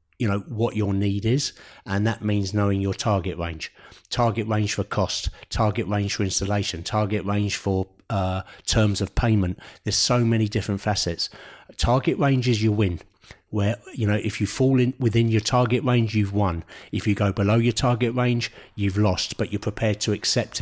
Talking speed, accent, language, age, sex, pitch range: 190 wpm, British, English, 30-49, male, 100-110 Hz